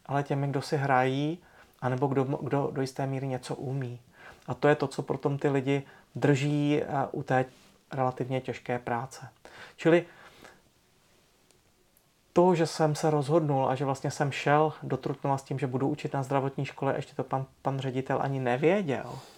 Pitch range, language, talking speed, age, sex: 130-150 Hz, Czech, 175 wpm, 30-49, male